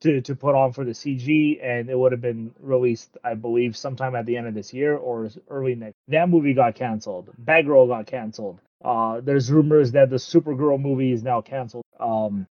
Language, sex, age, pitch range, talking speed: English, male, 30-49, 125-160 Hz, 210 wpm